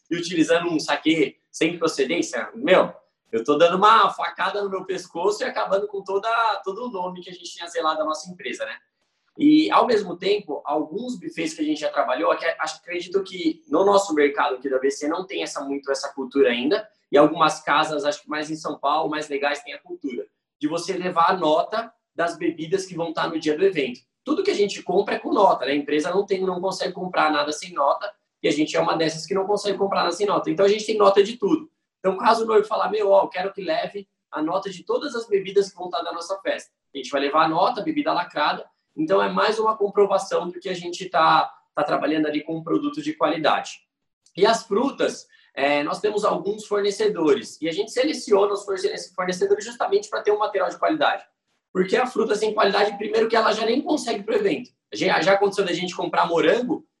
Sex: male